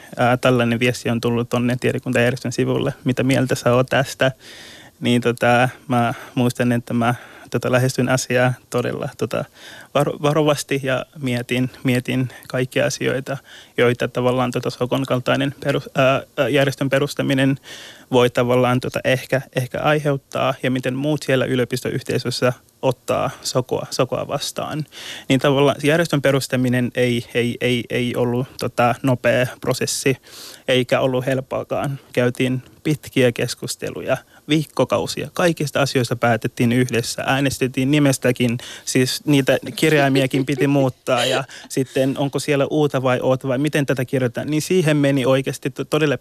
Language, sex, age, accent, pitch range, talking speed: Finnish, male, 20-39, native, 125-140 Hz, 125 wpm